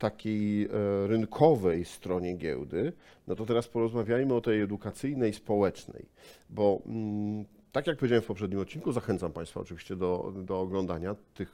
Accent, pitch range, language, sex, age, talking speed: native, 95-120 Hz, Polish, male, 50-69, 135 wpm